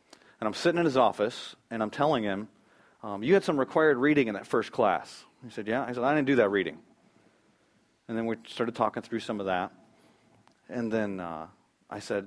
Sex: male